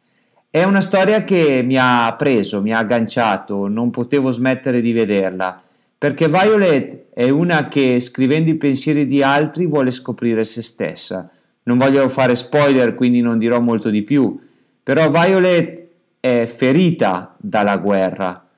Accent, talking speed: native, 145 wpm